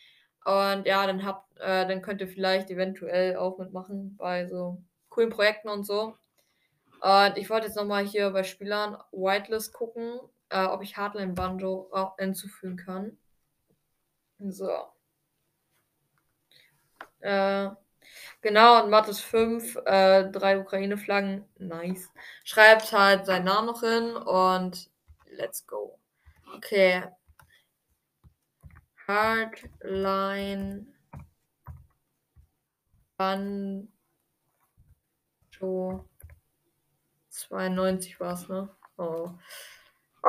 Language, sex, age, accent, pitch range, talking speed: German, female, 20-39, German, 190-220 Hz, 95 wpm